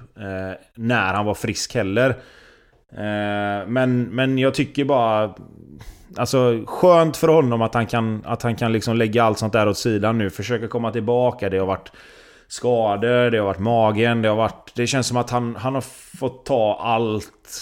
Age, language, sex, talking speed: 20-39, Swedish, male, 175 wpm